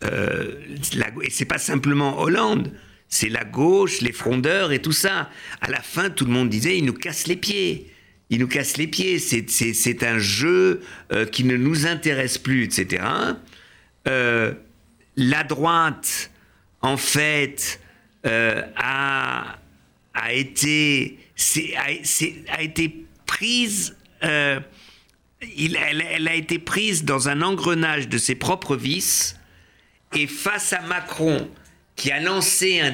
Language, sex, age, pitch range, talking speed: French, male, 60-79, 125-165 Hz, 150 wpm